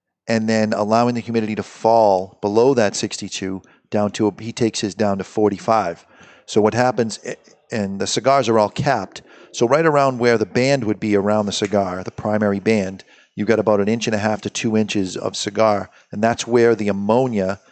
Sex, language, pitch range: male, English, 105-125 Hz